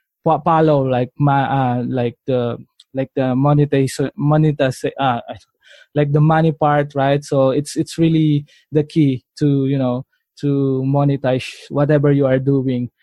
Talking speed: 145 wpm